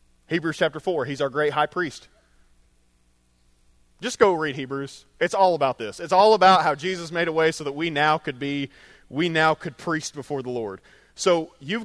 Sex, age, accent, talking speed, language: male, 30-49, American, 195 wpm, English